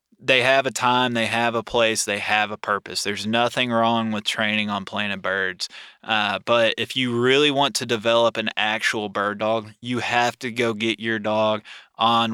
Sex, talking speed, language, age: male, 195 wpm, English, 20-39